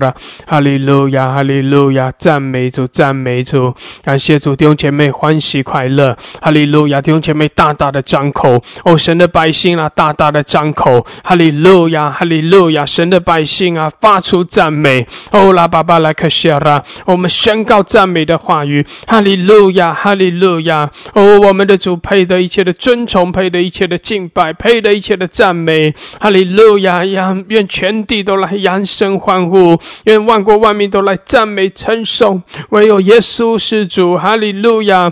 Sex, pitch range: male, 165-215 Hz